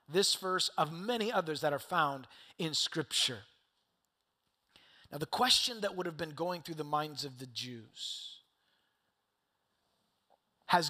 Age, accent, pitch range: 30-49, American, 155-220 Hz